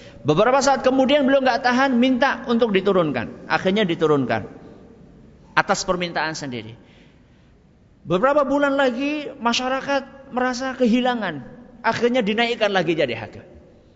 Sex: male